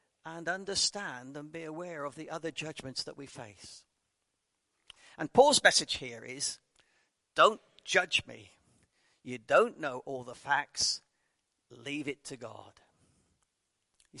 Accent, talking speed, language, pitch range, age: British, 130 wpm, English, 135-170 Hz, 50-69